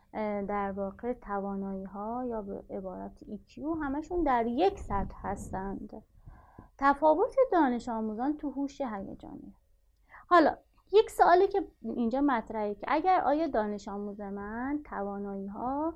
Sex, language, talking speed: female, Persian, 115 wpm